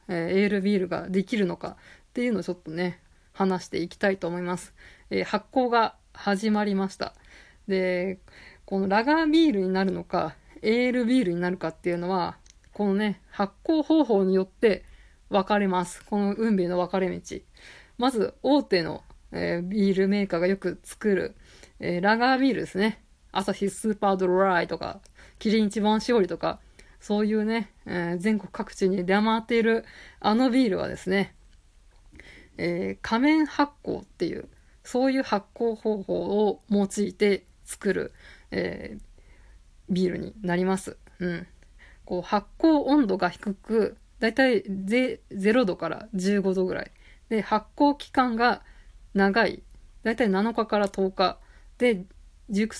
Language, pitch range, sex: Japanese, 185-225 Hz, female